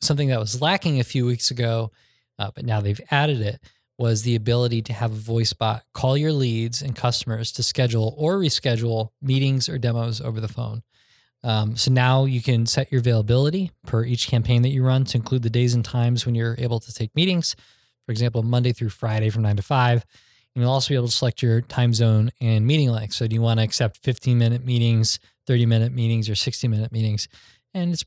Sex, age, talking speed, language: male, 20-39, 220 wpm, English